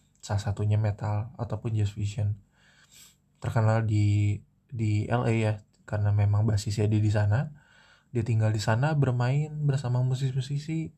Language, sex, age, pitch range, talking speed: Indonesian, male, 20-39, 105-125 Hz, 130 wpm